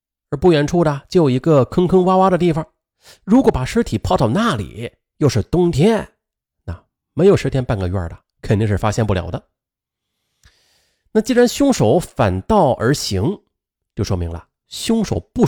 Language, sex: Chinese, male